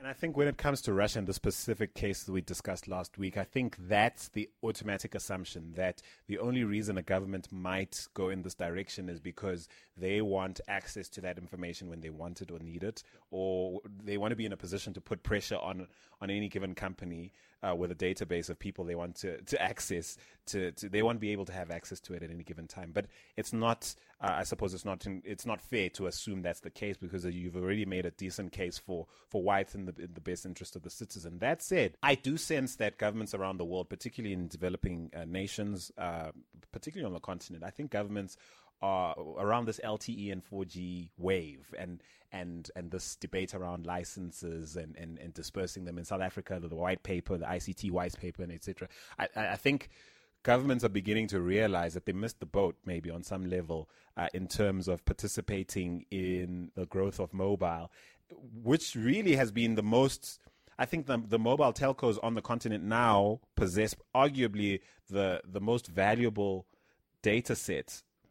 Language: English